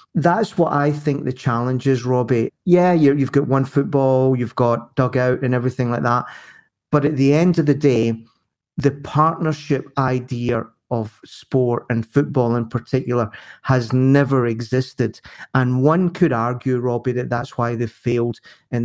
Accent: British